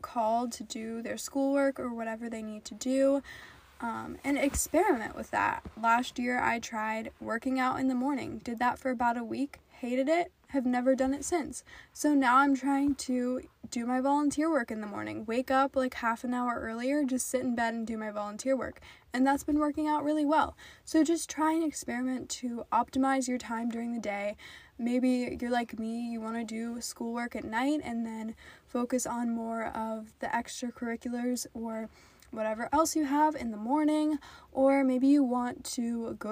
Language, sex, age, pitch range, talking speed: English, female, 10-29, 230-275 Hz, 195 wpm